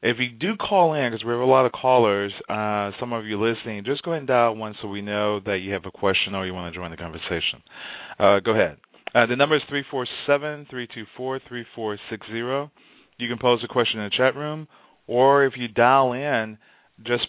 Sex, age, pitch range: male, 40-59, 100-130 Hz